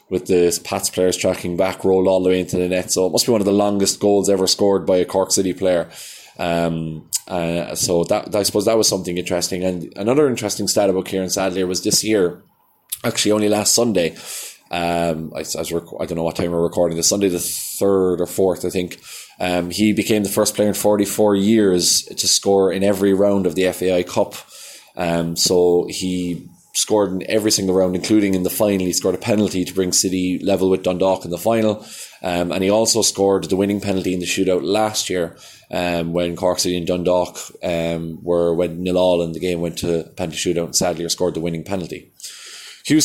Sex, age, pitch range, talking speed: male, 20-39, 90-105 Hz, 215 wpm